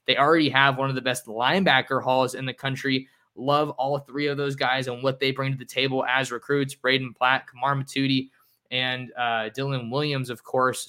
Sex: male